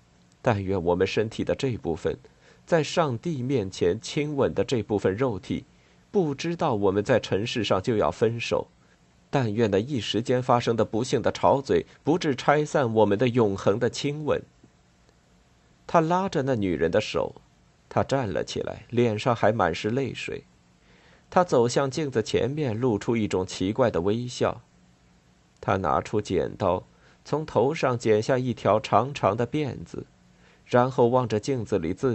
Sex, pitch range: male, 95-135 Hz